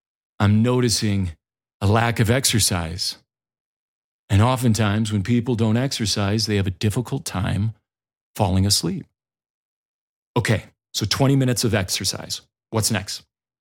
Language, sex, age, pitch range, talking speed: English, male, 40-59, 105-130 Hz, 120 wpm